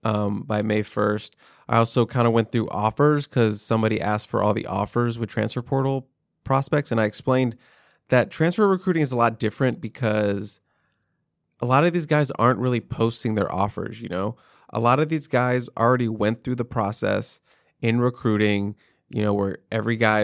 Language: English